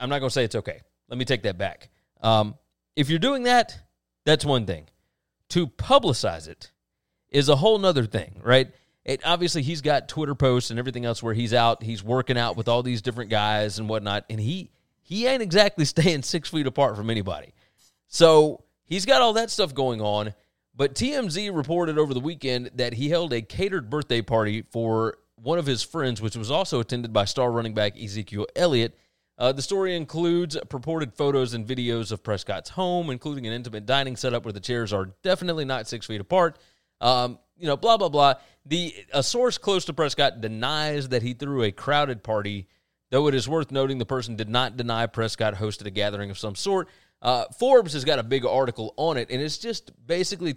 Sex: male